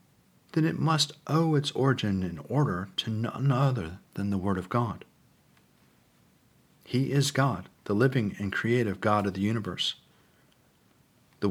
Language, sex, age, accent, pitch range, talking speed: English, male, 50-69, American, 110-140 Hz, 145 wpm